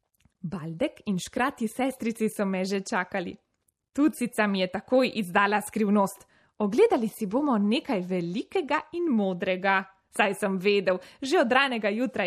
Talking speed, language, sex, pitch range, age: 135 wpm, Italian, female, 190-245 Hz, 20-39